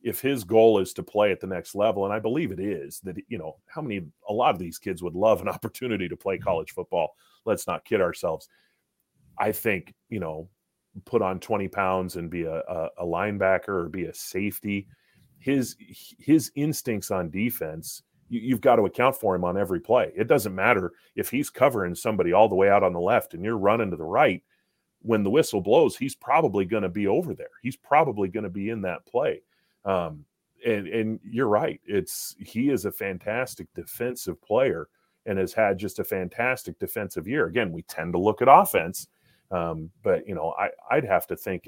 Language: English